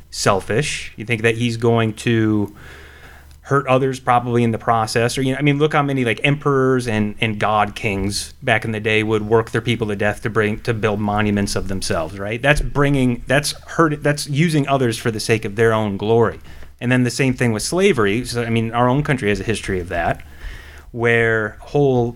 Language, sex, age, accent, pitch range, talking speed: English, male, 30-49, American, 100-125 Hz, 215 wpm